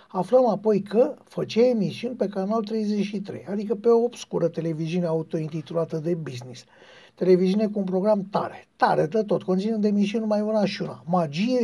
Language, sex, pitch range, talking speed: Romanian, male, 165-210 Hz, 160 wpm